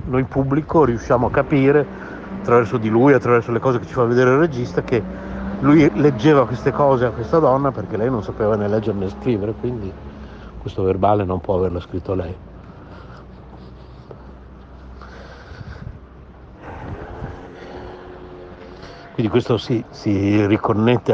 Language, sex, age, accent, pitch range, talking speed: Italian, male, 60-79, native, 95-125 Hz, 130 wpm